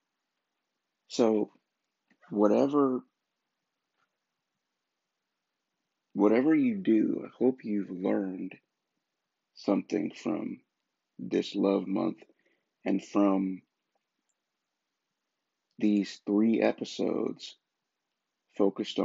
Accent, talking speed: American, 65 wpm